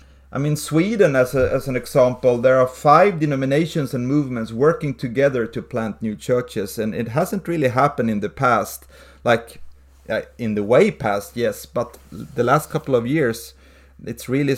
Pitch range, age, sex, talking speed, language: 115-140 Hz, 30-49, male, 170 wpm, English